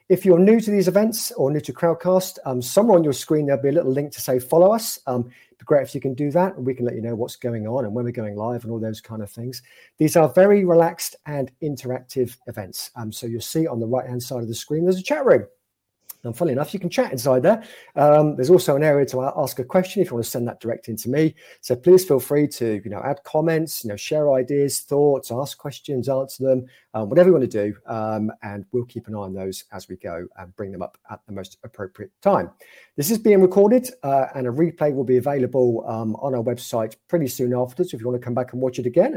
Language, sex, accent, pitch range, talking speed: English, male, British, 120-165 Hz, 270 wpm